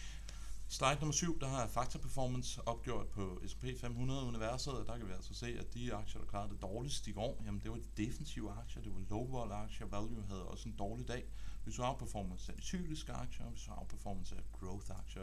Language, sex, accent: Danish, male, native